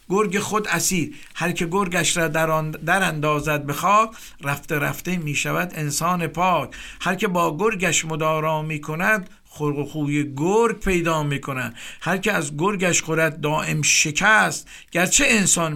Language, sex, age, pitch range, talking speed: Persian, male, 50-69, 150-185 Hz, 145 wpm